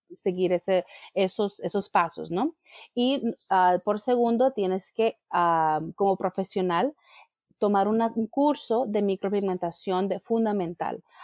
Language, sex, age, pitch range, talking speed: English, female, 30-49, 185-225 Hz, 125 wpm